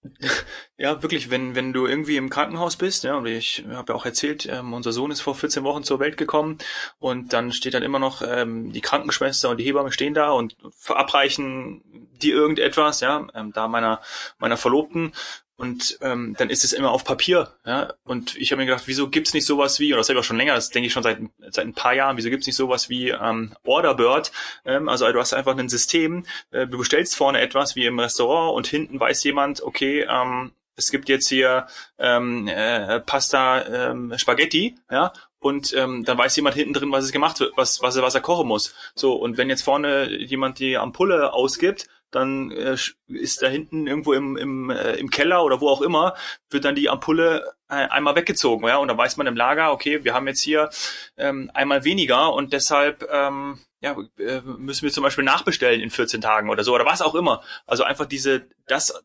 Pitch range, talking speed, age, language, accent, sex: 125-145 Hz, 215 wpm, 30-49, German, German, male